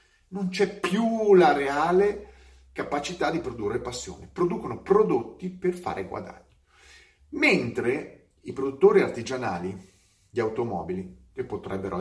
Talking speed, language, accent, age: 110 wpm, Italian, native, 40-59